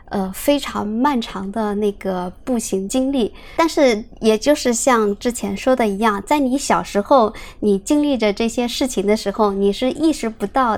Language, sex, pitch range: Chinese, male, 205-260 Hz